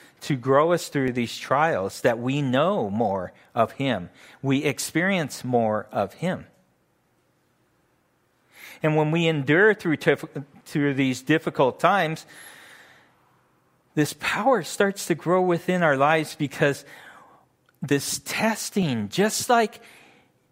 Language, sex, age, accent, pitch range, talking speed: English, male, 40-59, American, 115-160 Hz, 115 wpm